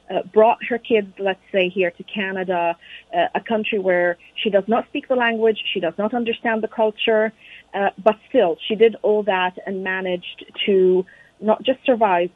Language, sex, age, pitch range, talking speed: English, female, 40-59, 180-225 Hz, 185 wpm